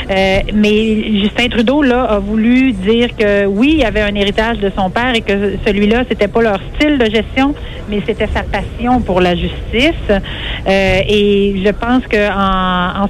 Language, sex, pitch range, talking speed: French, female, 195-235 Hz, 190 wpm